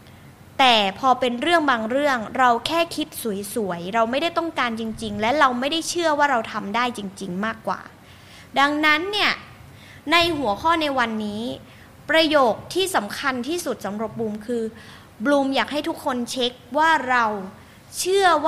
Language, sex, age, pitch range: Thai, female, 20-39, 245-340 Hz